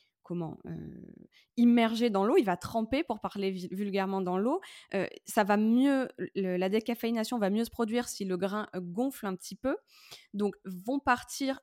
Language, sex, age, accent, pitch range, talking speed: French, female, 20-39, French, 190-245 Hz, 185 wpm